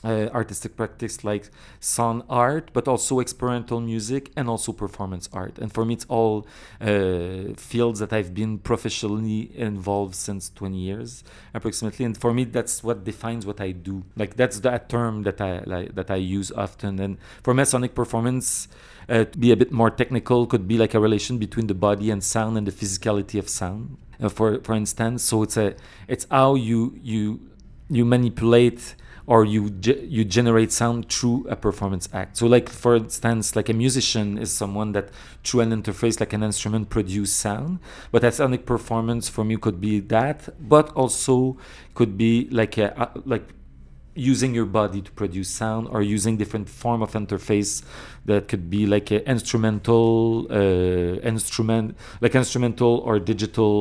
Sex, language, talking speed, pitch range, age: male, English, 175 wpm, 100-120 Hz, 40-59